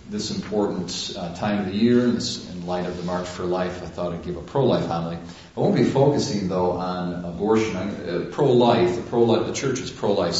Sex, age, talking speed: male, 40-59, 195 wpm